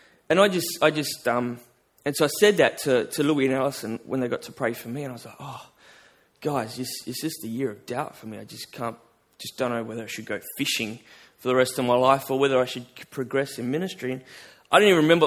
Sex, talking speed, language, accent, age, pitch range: male, 265 wpm, English, Australian, 20-39, 130-190 Hz